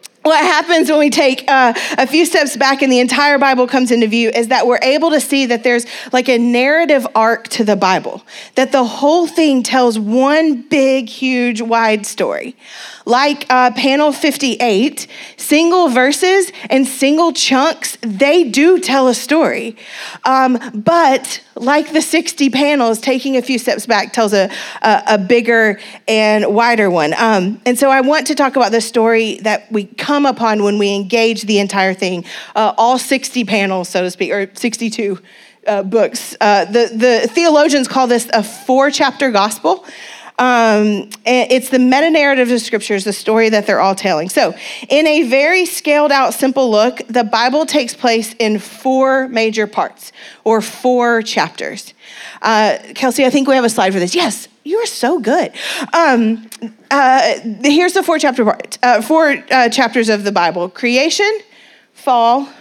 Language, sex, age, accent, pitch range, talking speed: English, female, 30-49, American, 225-280 Hz, 170 wpm